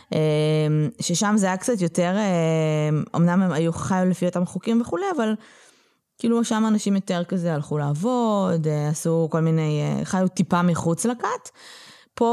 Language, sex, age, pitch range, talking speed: Hebrew, female, 20-39, 150-195 Hz, 140 wpm